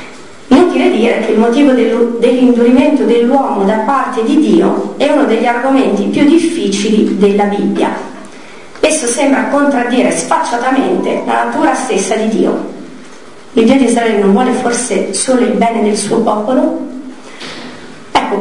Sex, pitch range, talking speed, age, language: female, 220-290 Hz, 135 wpm, 40-59, Italian